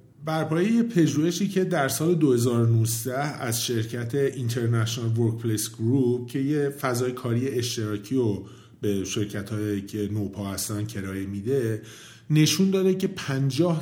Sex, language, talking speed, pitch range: male, Persian, 115 wpm, 110-160 Hz